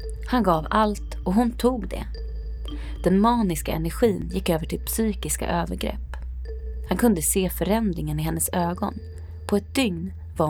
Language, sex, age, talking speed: Swedish, female, 20-39, 150 wpm